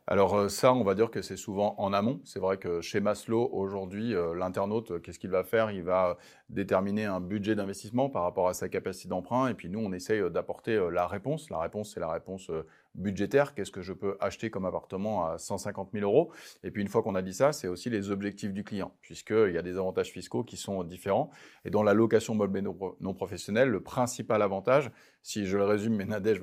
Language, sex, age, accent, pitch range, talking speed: French, male, 30-49, French, 100-115 Hz, 220 wpm